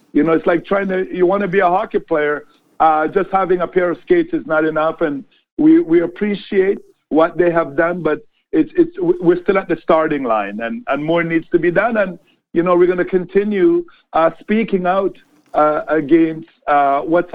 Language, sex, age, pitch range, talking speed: English, male, 50-69, 160-195 Hz, 210 wpm